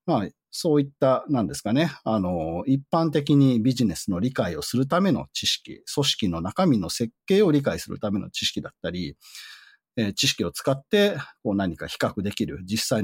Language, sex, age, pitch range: Japanese, male, 40-59, 110-185 Hz